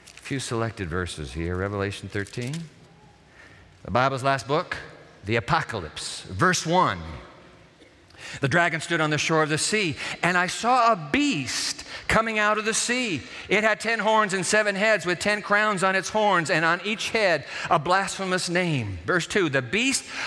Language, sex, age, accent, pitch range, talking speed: English, male, 50-69, American, 115-180 Hz, 170 wpm